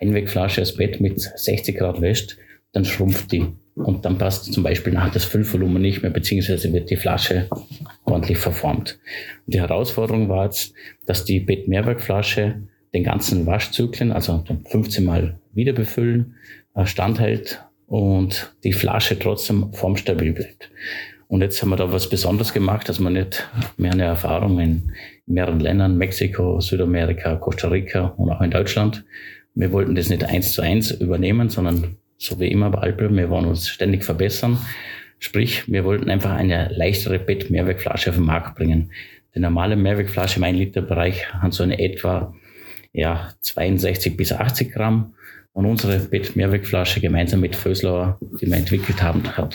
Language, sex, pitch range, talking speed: German, male, 90-105 Hz, 160 wpm